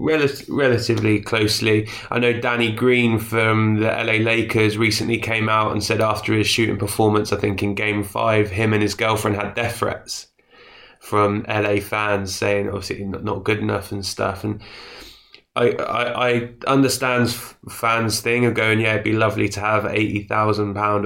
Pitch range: 105-115 Hz